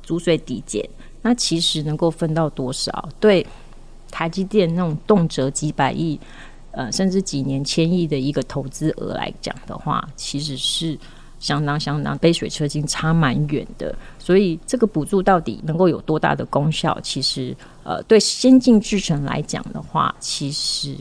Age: 30-49